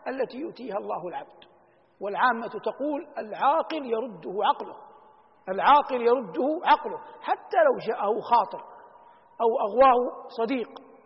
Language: Arabic